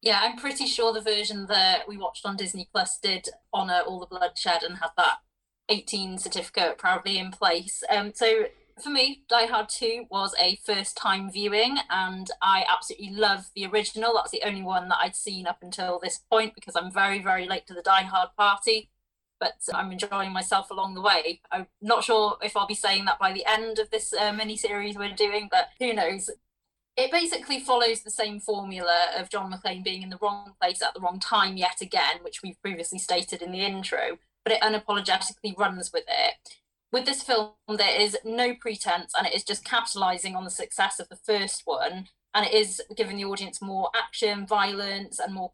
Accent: British